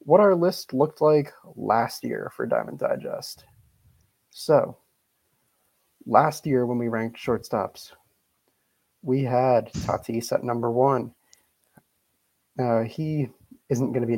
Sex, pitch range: male, 115-140 Hz